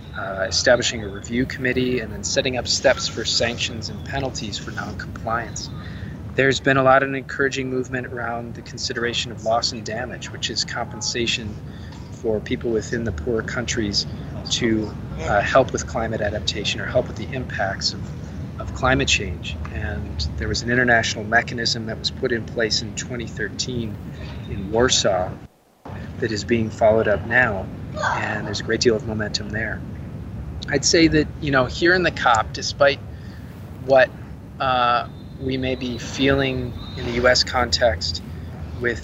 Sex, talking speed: male, 160 wpm